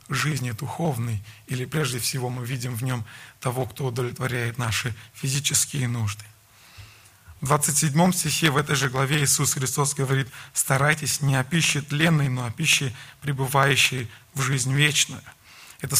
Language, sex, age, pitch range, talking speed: Russian, male, 20-39, 135-155 Hz, 145 wpm